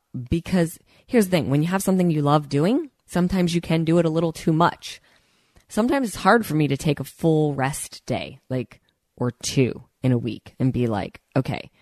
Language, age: English, 20-39